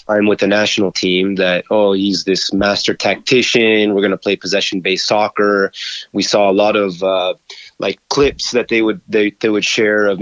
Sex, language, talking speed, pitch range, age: male, English, 190 wpm, 100-115 Hz, 30-49